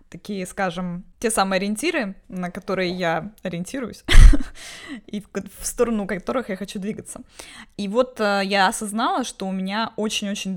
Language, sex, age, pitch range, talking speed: Russian, female, 20-39, 175-215 Hz, 140 wpm